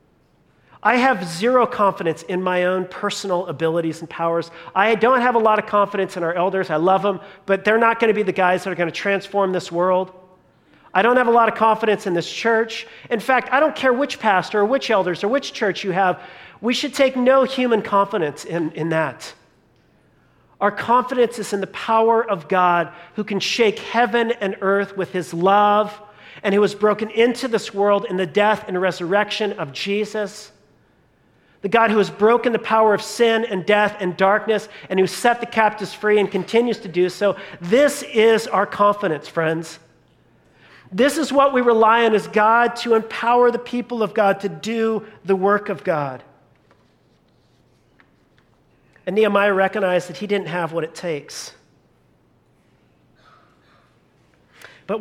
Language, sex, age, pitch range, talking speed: English, male, 40-59, 185-225 Hz, 180 wpm